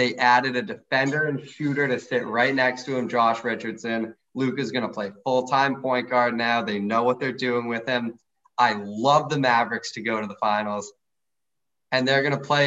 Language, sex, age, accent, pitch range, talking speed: English, male, 20-39, American, 115-135 Hz, 210 wpm